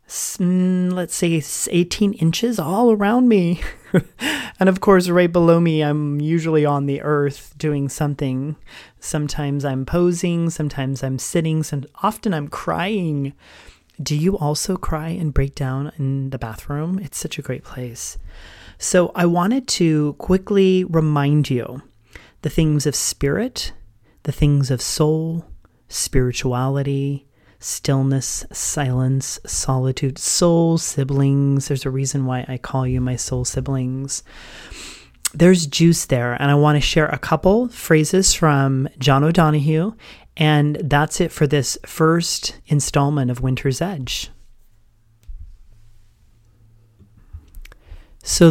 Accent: American